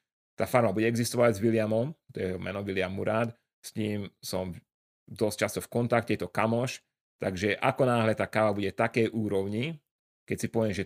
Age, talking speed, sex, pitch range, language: 30-49, 180 wpm, male, 100-120 Hz, Slovak